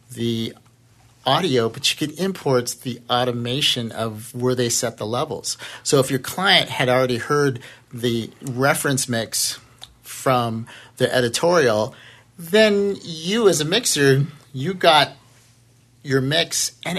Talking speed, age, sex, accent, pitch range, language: 130 wpm, 50-69, male, American, 120-150 Hz, English